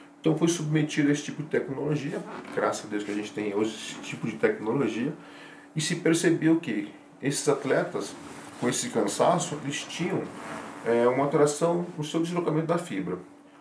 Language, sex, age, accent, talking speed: Portuguese, male, 40-59, Brazilian, 170 wpm